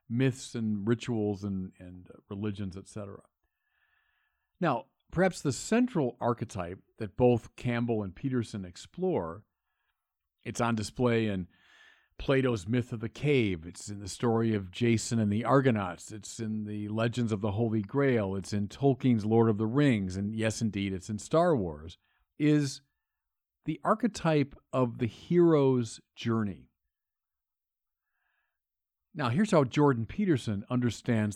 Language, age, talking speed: English, 50-69, 140 wpm